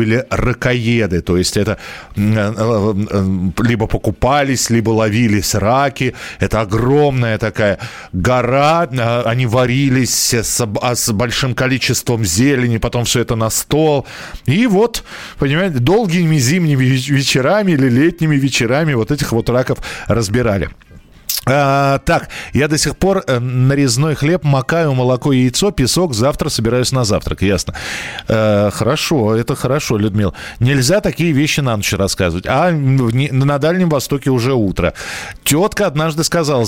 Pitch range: 115-155 Hz